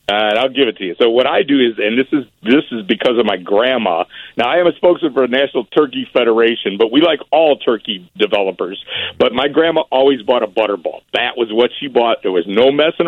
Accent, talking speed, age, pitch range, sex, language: American, 245 wpm, 50-69, 120-160 Hz, male, English